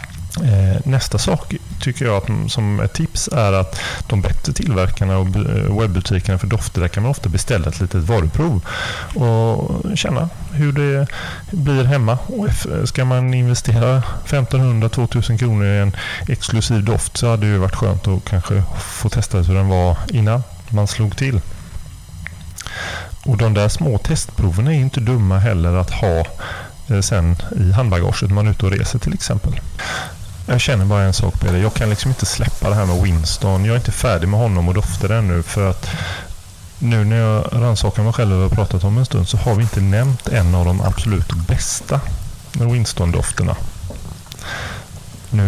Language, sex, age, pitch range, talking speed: English, male, 30-49, 95-120 Hz, 170 wpm